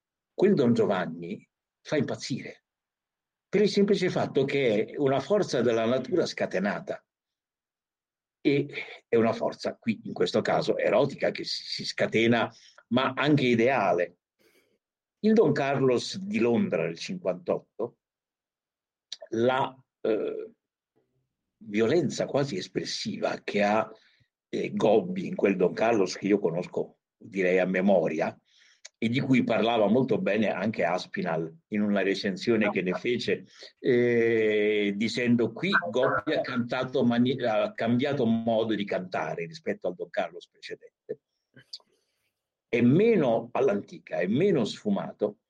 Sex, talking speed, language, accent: male, 125 wpm, Italian, native